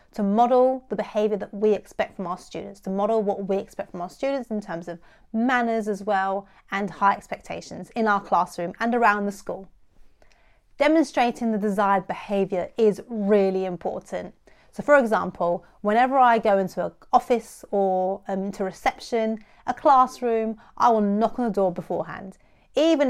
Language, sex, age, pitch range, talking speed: English, female, 30-49, 190-230 Hz, 165 wpm